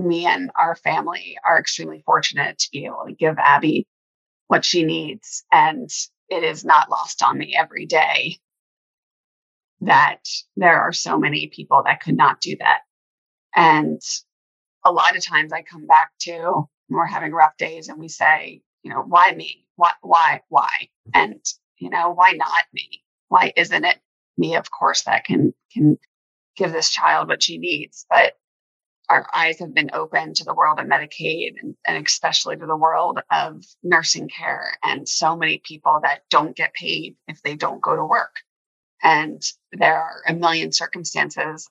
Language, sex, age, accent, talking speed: English, female, 30-49, American, 175 wpm